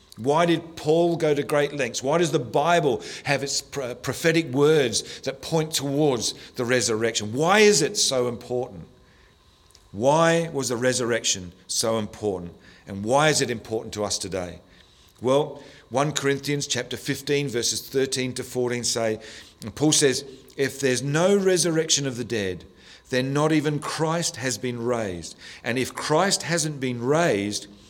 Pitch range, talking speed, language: 115-155 Hz, 155 wpm, English